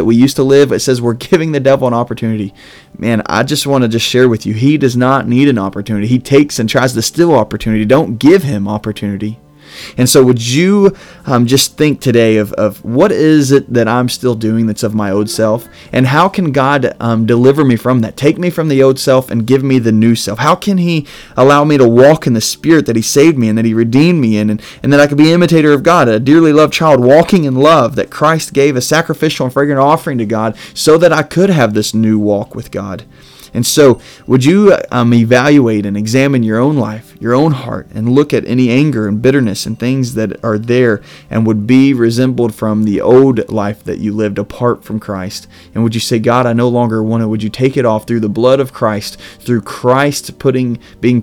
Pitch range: 110-140 Hz